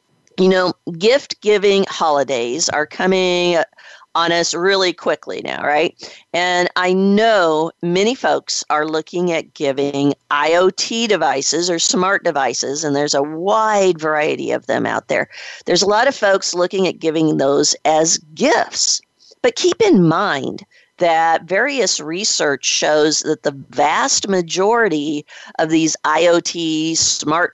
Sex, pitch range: female, 155-190 Hz